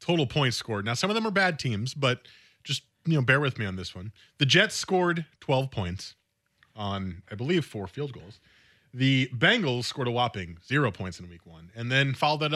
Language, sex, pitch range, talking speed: English, male, 110-145 Hz, 215 wpm